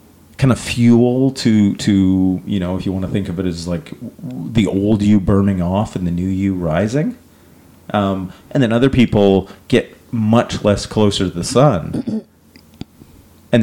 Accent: American